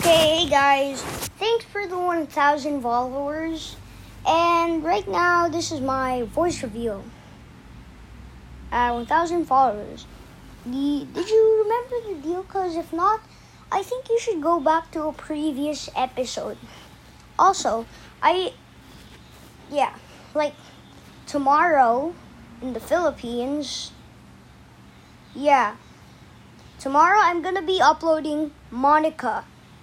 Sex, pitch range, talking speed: male, 260-345 Hz, 105 wpm